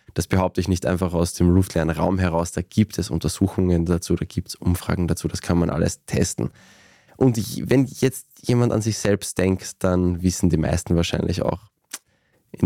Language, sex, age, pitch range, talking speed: German, male, 20-39, 90-115 Hz, 185 wpm